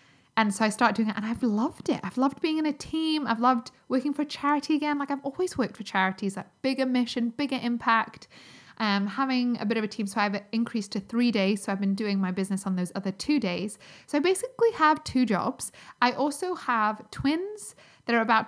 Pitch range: 205-265 Hz